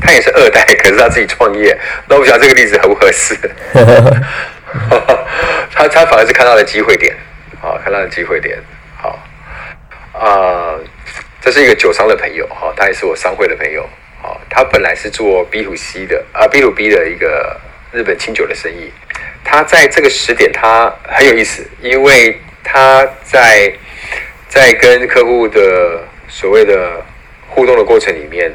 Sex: male